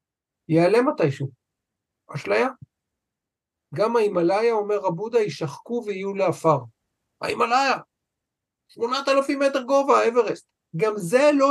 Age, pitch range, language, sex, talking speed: 50-69, 130-200 Hz, Hebrew, male, 100 wpm